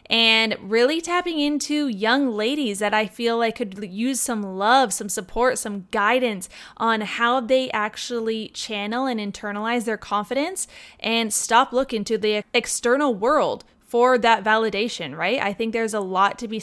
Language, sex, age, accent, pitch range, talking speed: English, female, 20-39, American, 205-240 Hz, 160 wpm